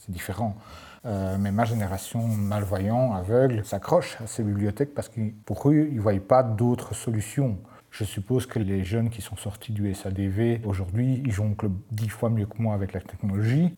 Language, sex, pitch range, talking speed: French, male, 105-140 Hz, 185 wpm